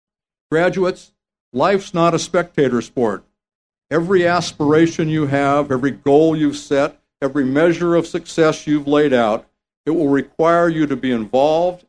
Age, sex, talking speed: 60-79, male, 140 wpm